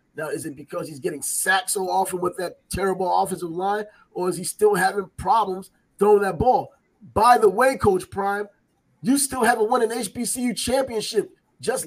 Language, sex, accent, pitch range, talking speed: English, male, American, 205-260 Hz, 180 wpm